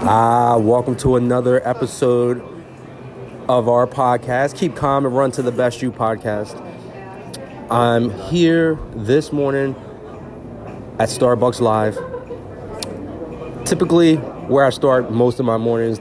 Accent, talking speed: American, 120 wpm